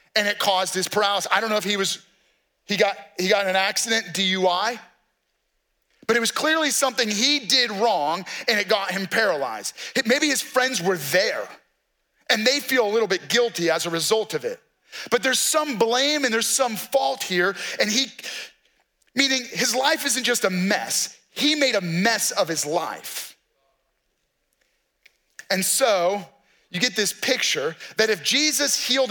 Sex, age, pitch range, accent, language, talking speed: male, 30-49, 200-260 Hz, American, English, 175 wpm